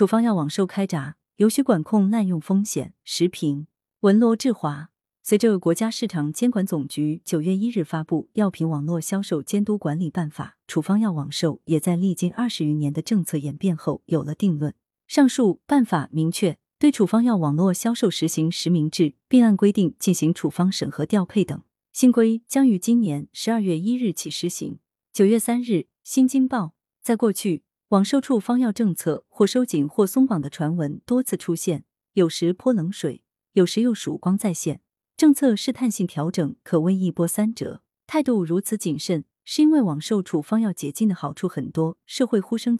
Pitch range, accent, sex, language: 160-220 Hz, native, female, Chinese